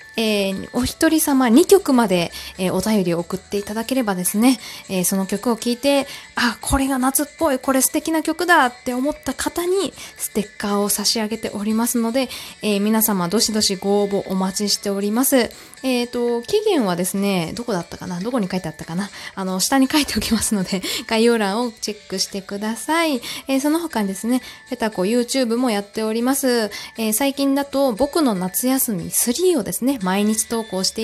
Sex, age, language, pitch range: female, 20-39, Japanese, 200-270 Hz